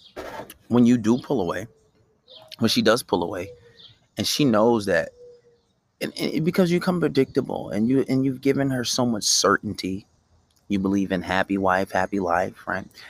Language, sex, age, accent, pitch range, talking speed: English, male, 30-49, American, 85-115 Hz, 170 wpm